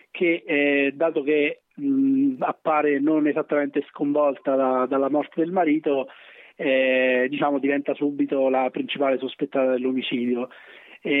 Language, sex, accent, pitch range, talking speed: Italian, male, native, 130-150 Hz, 105 wpm